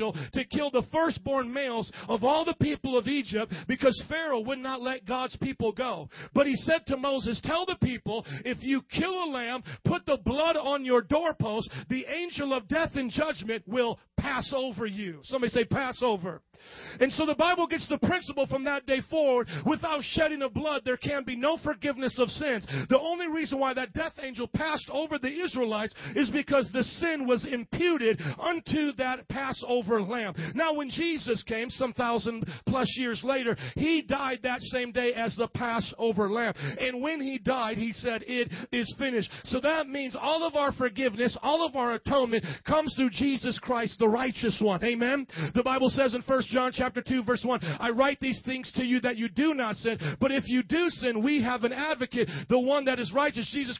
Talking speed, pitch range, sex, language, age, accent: 195 wpm, 235-280 Hz, male, English, 40-59, American